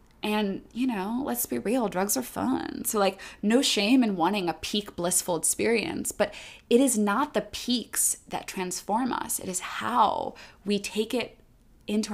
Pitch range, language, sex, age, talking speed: 185-235 Hz, English, female, 20-39, 175 wpm